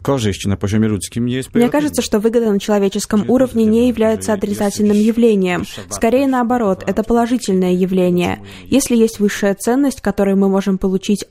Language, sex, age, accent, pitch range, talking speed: Russian, female, 20-39, native, 195-230 Hz, 125 wpm